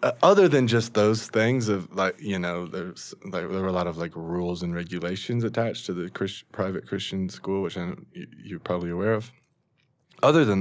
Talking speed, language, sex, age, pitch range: 200 wpm, English, male, 20-39, 85-110 Hz